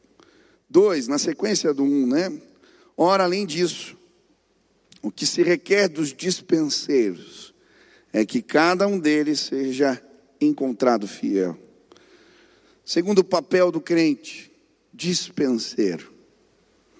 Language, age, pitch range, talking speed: Portuguese, 50-69, 130-180 Hz, 100 wpm